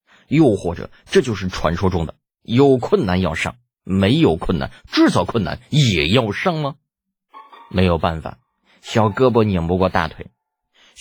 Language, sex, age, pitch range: Chinese, male, 30-49, 85-145 Hz